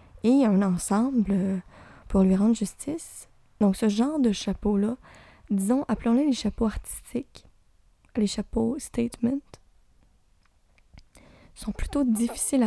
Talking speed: 105 wpm